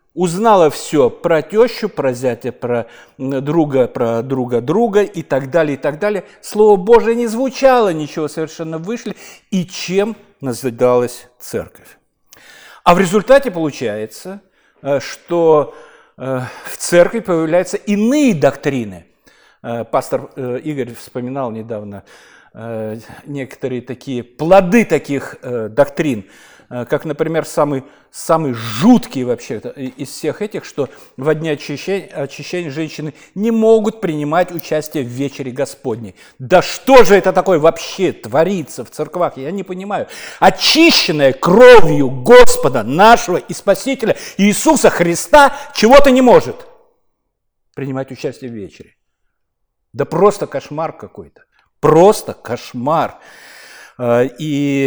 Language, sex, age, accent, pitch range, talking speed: Russian, male, 50-69, native, 135-205 Hz, 110 wpm